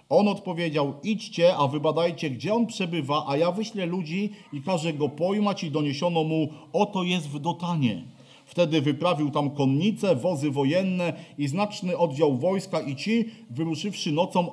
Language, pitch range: Polish, 150-205 Hz